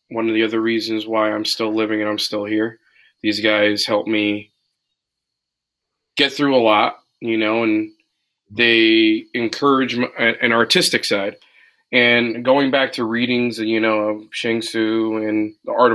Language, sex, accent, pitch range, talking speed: English, male, American, 110-120 Hz, 160 wpm